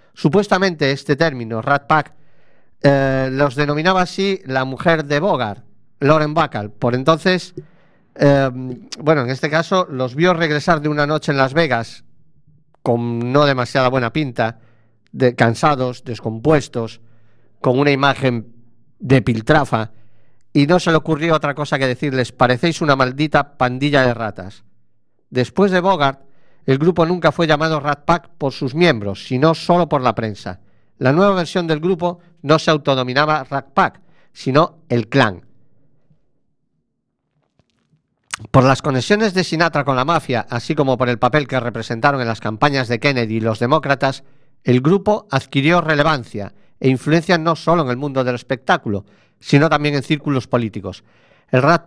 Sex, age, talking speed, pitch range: male, 50-69, 155 wpm, 125-160 Hz